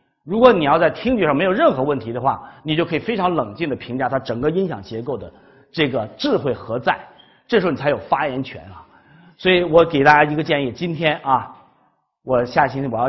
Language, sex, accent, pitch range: Chinese, male, native, 120-180 Hz